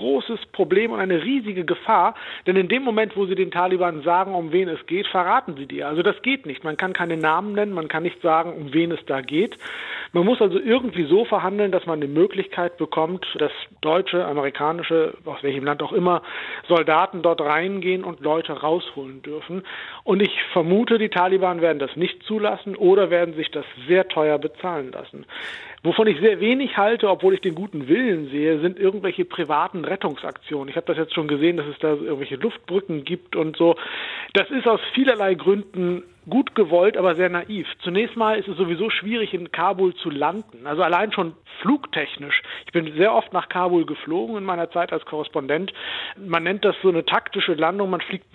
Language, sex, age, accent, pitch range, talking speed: German, male, 50-69, German, 160-195 Hz, 195 wpm